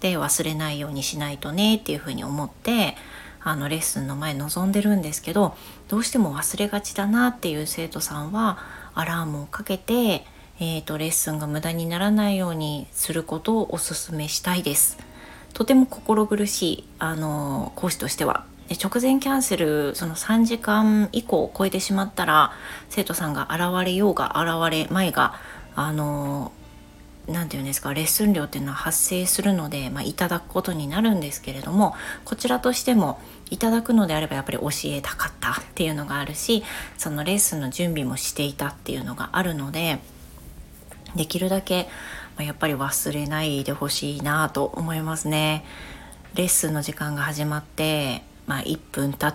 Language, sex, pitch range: Japanese, female, 150-195 Hz